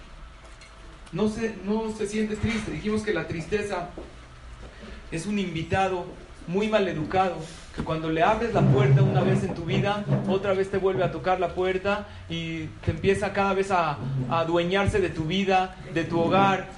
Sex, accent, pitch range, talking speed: male, Mexican, 165-215 Hz, 175 wpm